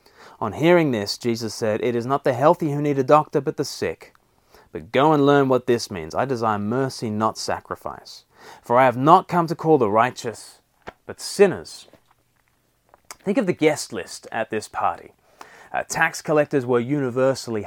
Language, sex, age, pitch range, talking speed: English, male, 30-49, 115-155 Hz, 180 wpm